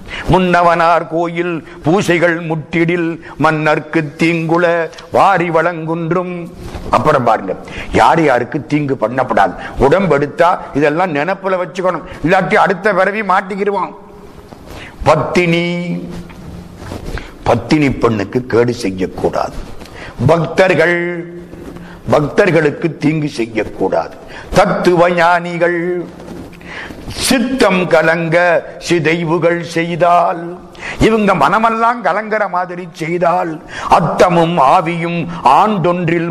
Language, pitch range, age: Tamil, 160-180 Hz, 50-69